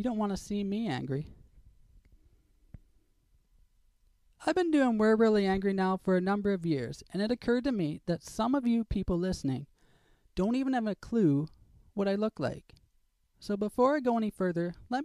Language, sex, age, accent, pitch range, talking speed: English, male, 20-39, American, 170-210 Hz, 185 wpm